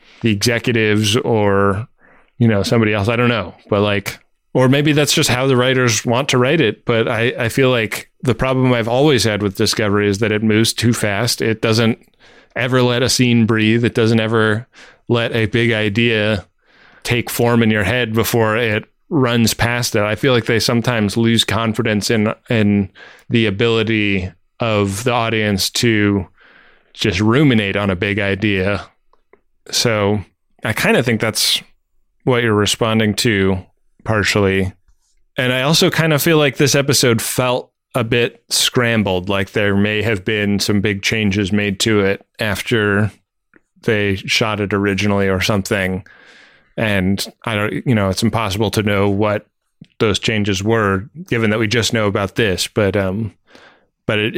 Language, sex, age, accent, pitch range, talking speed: English, male, 20-39, American, 100-120 Hz, 170 wpm